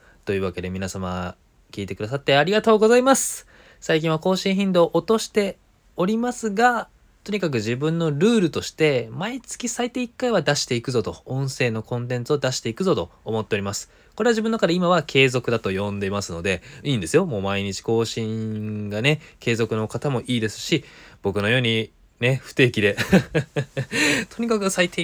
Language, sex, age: Japanese, male, 20-39